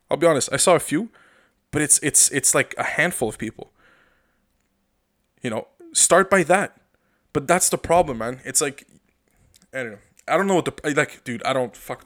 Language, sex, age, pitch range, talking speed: English, male, 20-39, 130-175 Hz, 205 wpm